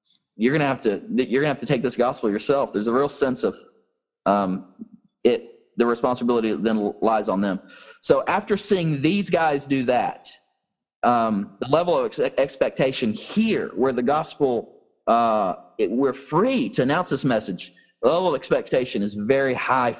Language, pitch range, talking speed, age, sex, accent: English, 105-140 Hz, 175 wpm, 30-49, male, American